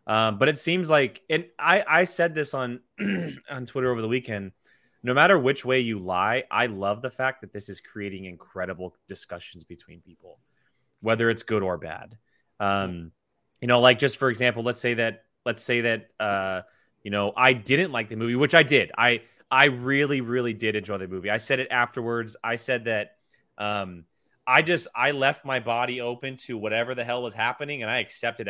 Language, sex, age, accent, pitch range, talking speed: English, male, 30-49, American, 105-135 Hz, 200 wpm